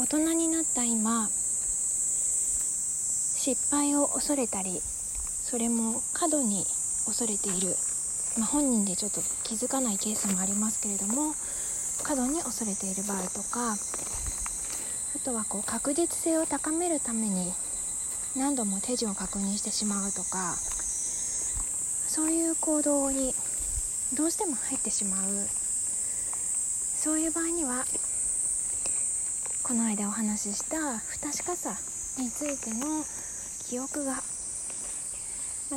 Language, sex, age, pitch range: Japanese, female, 40-59, 210-285 Hz